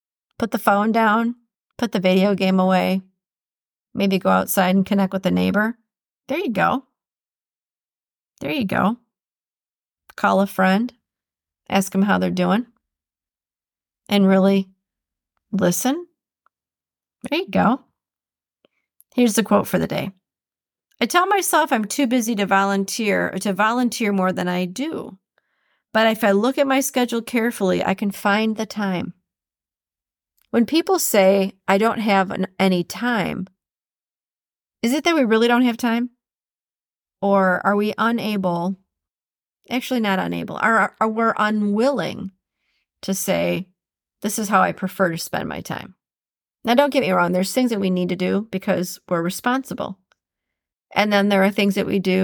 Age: 40-59